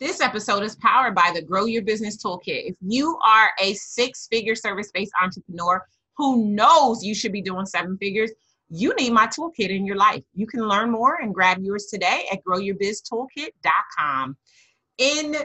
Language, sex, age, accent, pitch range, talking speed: English, female, 30-49, American, 180-235 Hz, 165 wpm